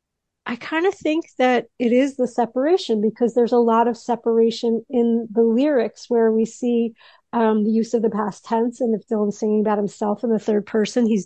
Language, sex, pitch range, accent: English, female, 210-240 Hz, American